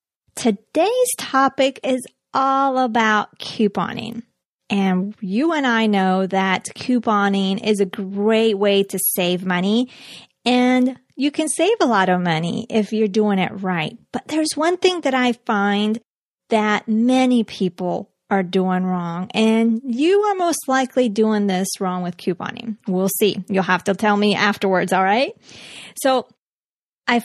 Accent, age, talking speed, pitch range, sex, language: American, 30-49, 150 wpm, 195-250 Hz, female, English